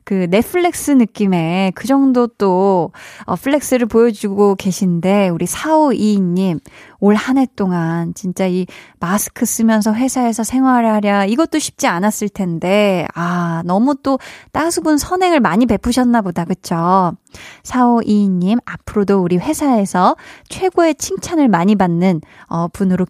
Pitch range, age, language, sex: 190-260 Hz, 20-39, Korean, female